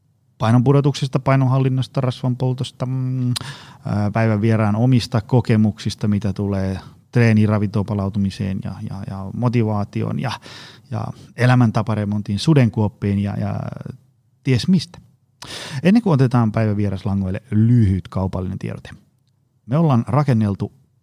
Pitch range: 105-130 Hz